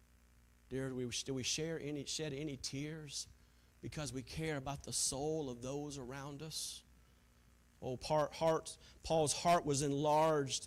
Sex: male